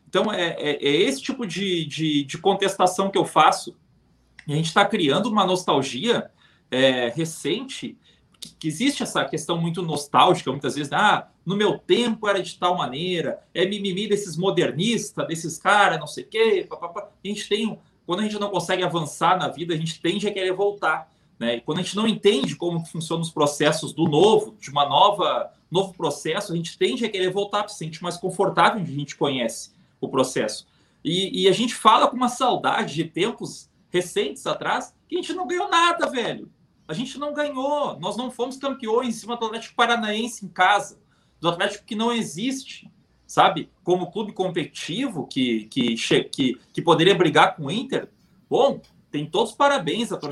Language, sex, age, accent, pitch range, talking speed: Portuguese, male, 30-49, Brazilian, 165-220 Hz, 190 wpm